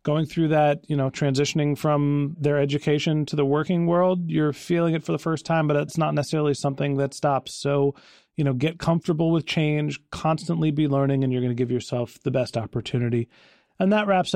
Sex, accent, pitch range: male, American, 140-185 Hz